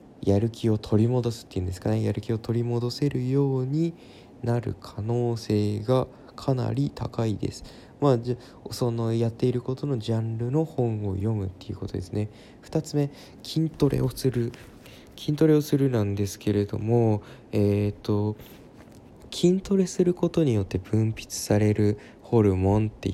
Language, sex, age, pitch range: Japanese, male, 20-39, 105-130 Hz